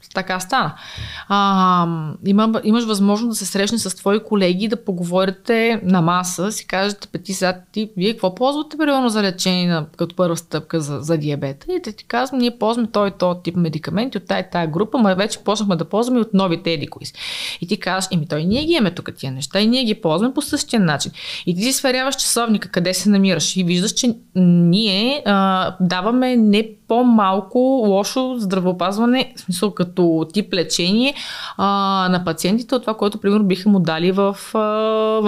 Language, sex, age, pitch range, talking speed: Bulgarian, female, 20-39, 175-220 Hz, 185 wpm